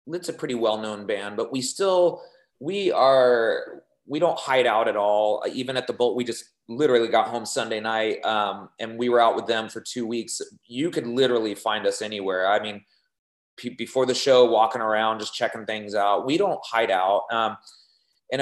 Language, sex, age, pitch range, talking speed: English, male, 30-49, 110-130 Hz, 200 wpm